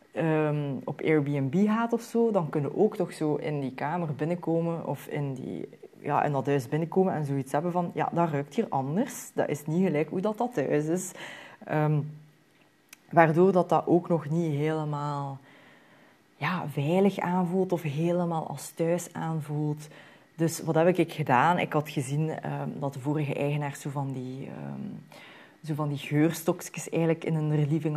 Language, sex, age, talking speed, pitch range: Dutch, female, 20-39, 175 wpm, 150-185 Hz